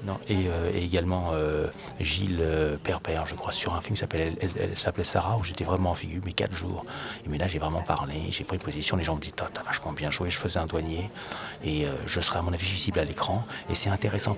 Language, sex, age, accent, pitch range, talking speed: French, male, 30-49, French, 85-100 Hz, 265 wpm